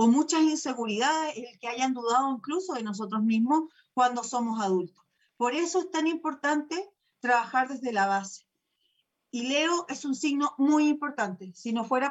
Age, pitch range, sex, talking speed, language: 40-59, 235-305 Hz, female, 165 wpm, Spanish